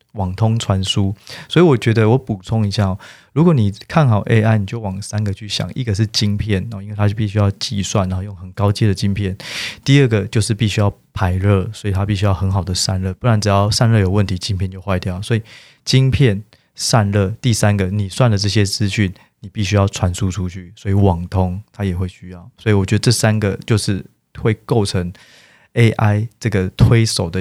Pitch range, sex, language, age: 95-115 Hz, male, Chinese, 20-39